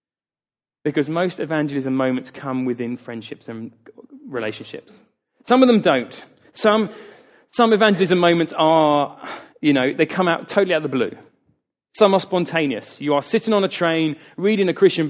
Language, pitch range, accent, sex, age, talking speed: English, 130-170 Hz, British, male, 30-49, 160 wpm